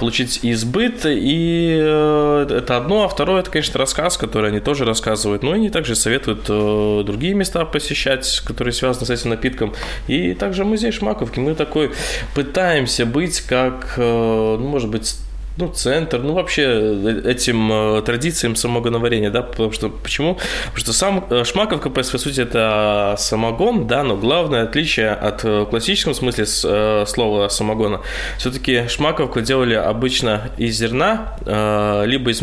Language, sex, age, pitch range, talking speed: Russian, male, 20-39, 105-130 Hz, 140 wpm